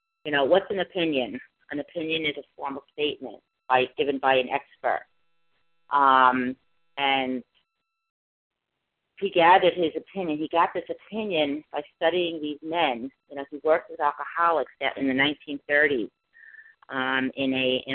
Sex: female